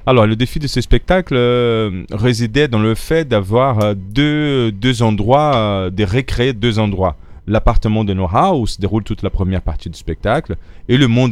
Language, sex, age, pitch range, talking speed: French, male, 30-49, 90-110 Hz, 185 wpm